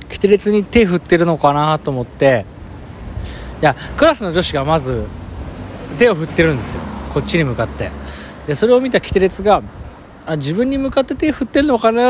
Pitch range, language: 95-160 Hz, Japanese